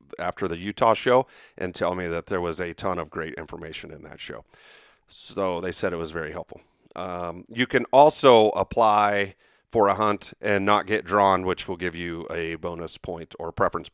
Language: English